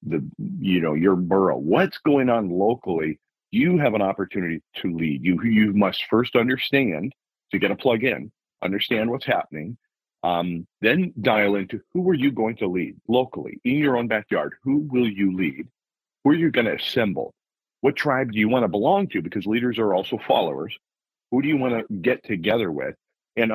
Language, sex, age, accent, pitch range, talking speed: English, male, 40-59, American, 90-115 Hz, 190 wpm